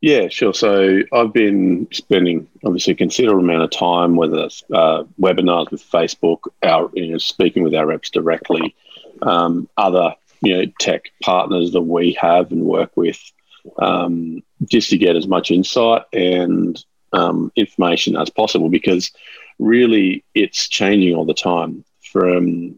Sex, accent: male, Australian